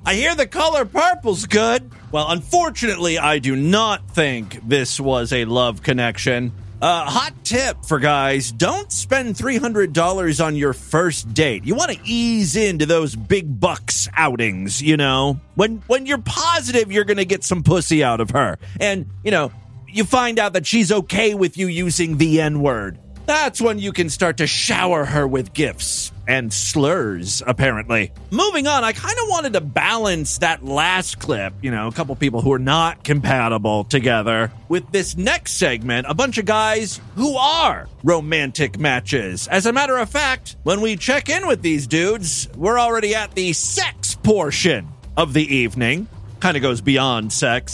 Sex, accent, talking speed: male, American, 175 wpm